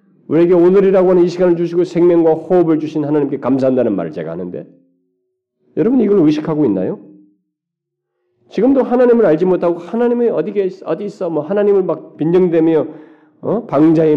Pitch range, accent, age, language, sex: 110-170 Hz, native, 40-59, Korean, male